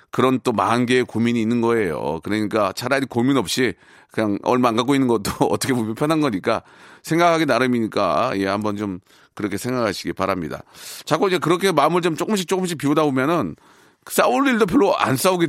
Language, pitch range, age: Korean, 120-165 Hz, 40-59